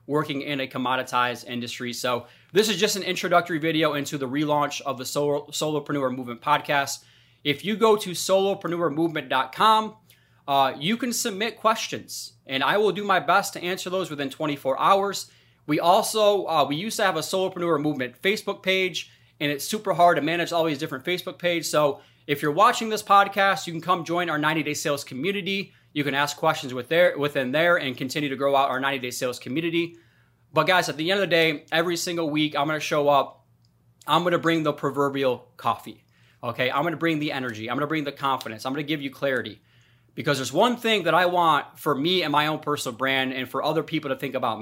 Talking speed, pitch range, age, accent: 210 wpm, 130-175 Hz, 30-49, American